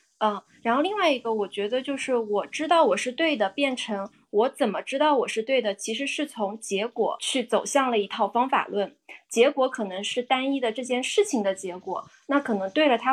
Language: Chinese